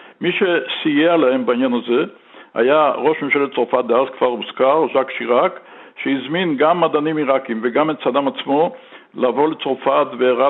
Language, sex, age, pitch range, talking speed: Hebrew, male, 60-79, 130-160 Hz, 145 wpm